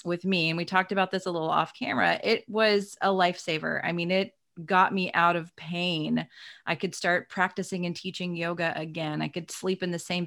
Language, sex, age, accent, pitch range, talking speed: English, female, 30-49, American, 170-205 Hz, 215 wpm